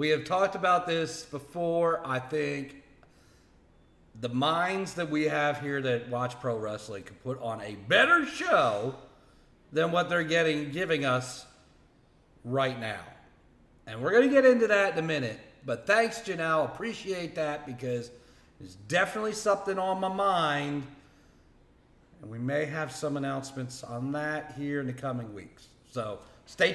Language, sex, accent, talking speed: English, male, American, 155 wpm